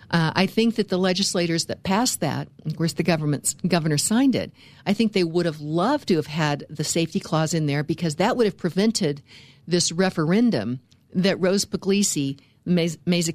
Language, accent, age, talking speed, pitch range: English, American, 60-79, 185 wpm, 150-190 Hz